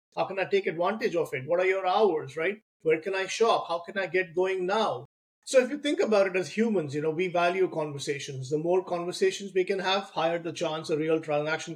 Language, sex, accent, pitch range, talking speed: English, male, Indian, 150-185 Hz, 240 wpm